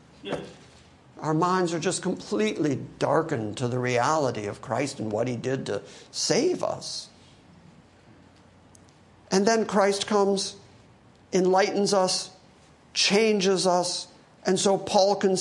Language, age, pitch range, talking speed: English, 50-69, 150-200 Hz, 115 wpm